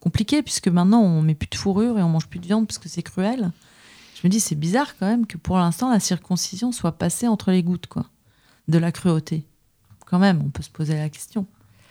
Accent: French